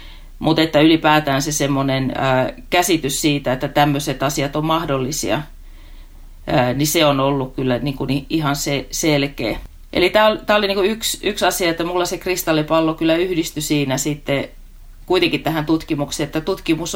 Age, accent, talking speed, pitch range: 30-49, native, 150 wpm, 135-160 Hz